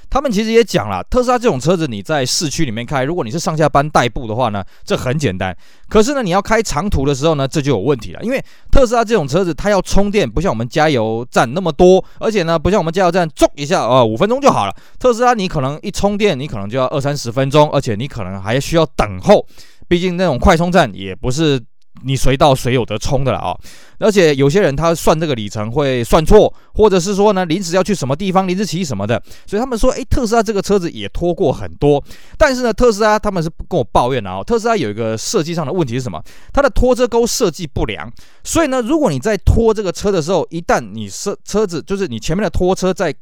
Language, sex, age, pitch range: Chinese, male, 20-39, 130-200 Hz